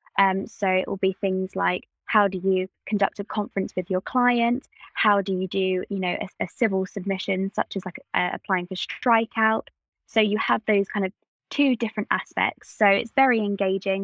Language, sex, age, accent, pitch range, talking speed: English, female, 20-39, British, 190-215 Hz, 200 wpm